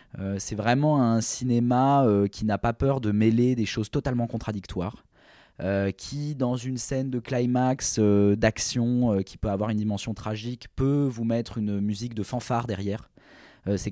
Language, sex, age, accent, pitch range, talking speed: French, male, 20-39, French, 105-130 Hz, 180 wpm